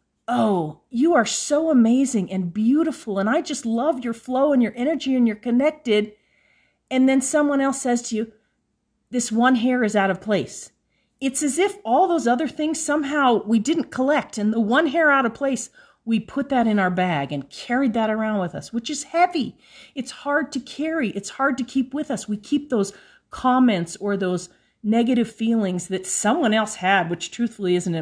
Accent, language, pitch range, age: American, English, 190-270 Hz, 40-59